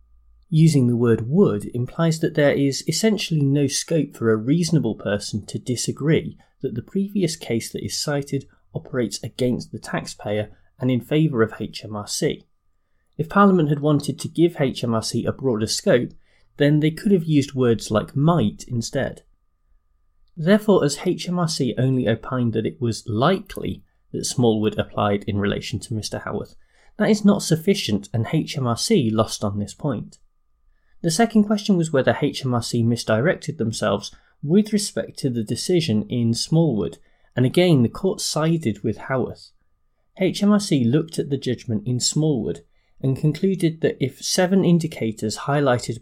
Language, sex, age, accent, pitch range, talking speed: English, male, 30-49, British, 110-160 Hz, 150 wpm